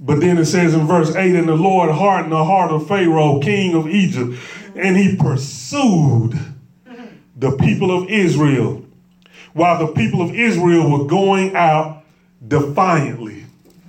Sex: male